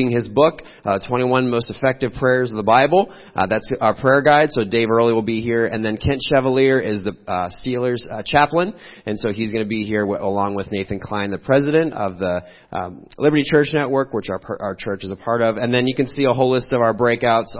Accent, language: American, English